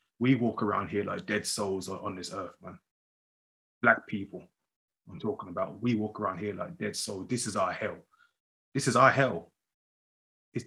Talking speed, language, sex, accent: 180 wpm, English, male, British